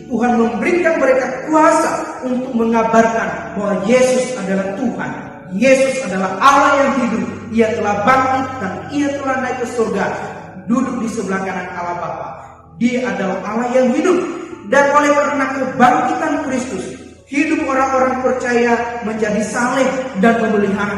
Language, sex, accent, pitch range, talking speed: Indonesian, male, native, 220-260 Hz, 135 wpm